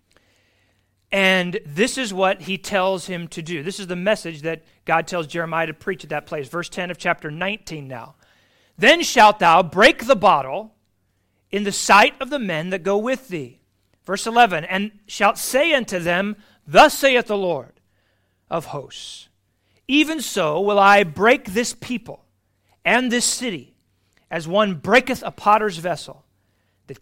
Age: 40-59